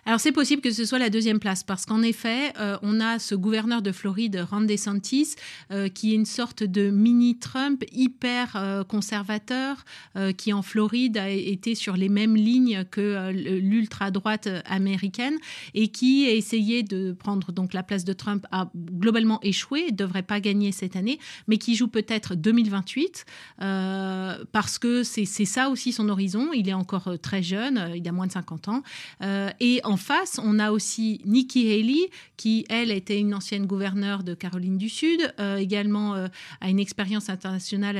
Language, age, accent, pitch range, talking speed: French, 30-49, French, 195-235 Hz, 185 wpm